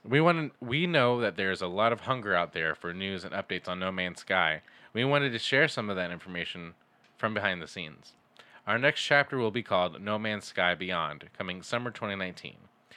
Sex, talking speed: male, 215 wpm